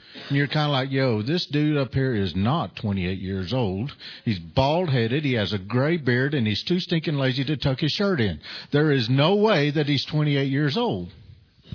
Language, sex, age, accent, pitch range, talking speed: English, male, 50-69, American, 110-170 Hz, 210 wpm